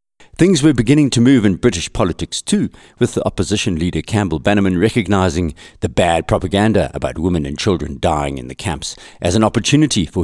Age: 60-79